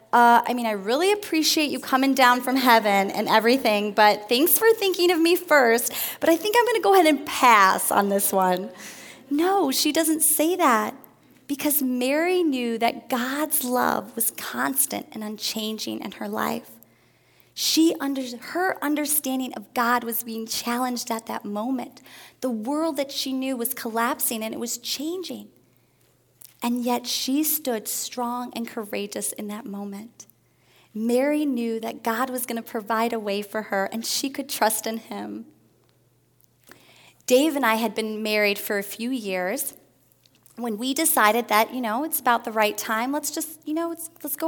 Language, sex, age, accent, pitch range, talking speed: English, female, 30-49, American, 225-295 Hz, 175 wpm